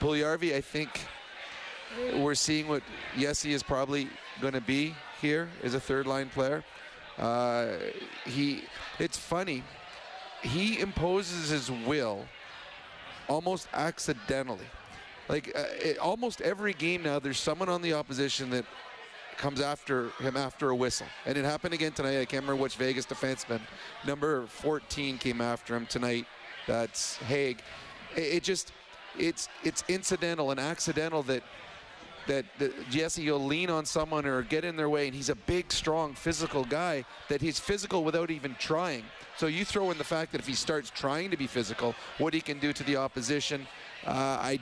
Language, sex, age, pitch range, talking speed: English, male, 30-49, 130-155 Hz, 165 wpm